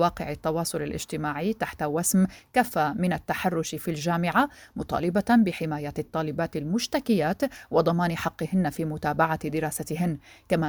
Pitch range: 155-190 Hz